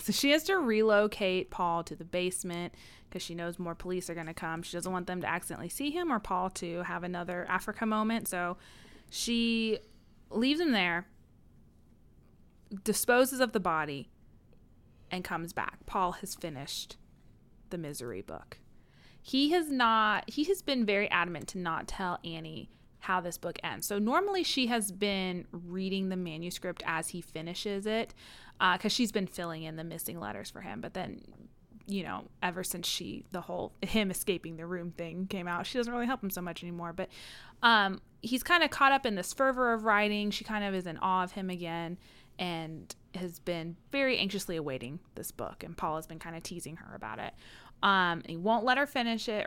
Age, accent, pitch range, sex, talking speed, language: 30-49, American, 170-220 Hz, female, 195 wpm, English